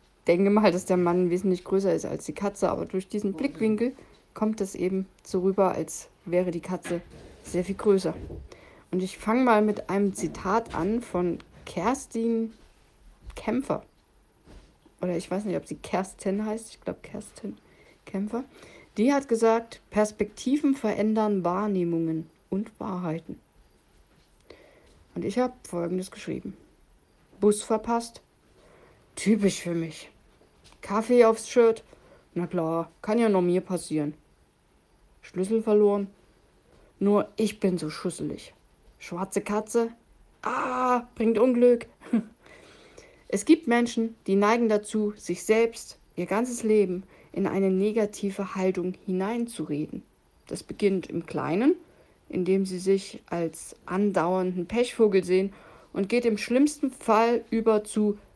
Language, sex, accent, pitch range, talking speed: German, female, German, 180-225 Hz, 130 wpm